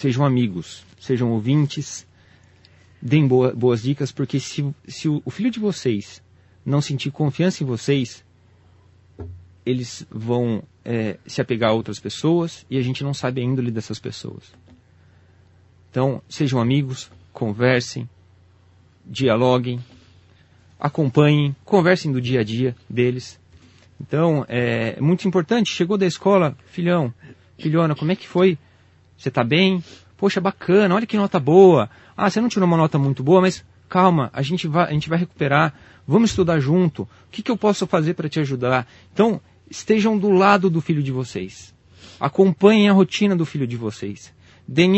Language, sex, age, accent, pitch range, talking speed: Portuguese, male, 40-59, Brazilian, 110-165 Hz, 155 wpm